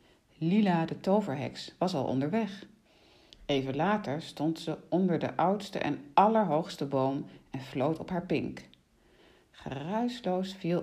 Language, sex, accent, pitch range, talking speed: Dutch, female, Dutch, 140-190 Hz, 125 wpm